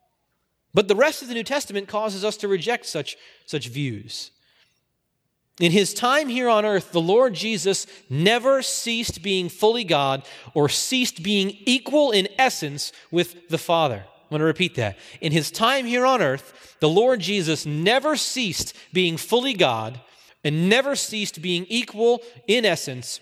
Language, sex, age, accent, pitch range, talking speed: English, male, 40-59, American, 165-235 Hz, 165 wpm